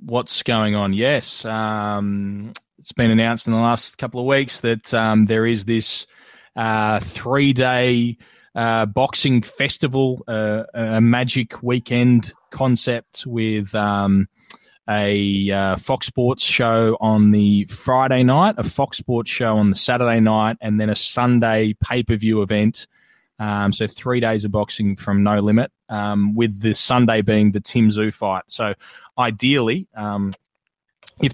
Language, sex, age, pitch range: English, male, 20-39, 105-125 Hz